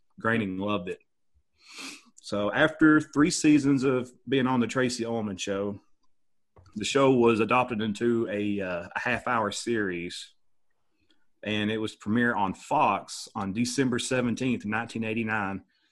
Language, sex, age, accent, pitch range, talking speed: English, male, 40-59, American, 105-130 Hz, 130 wpm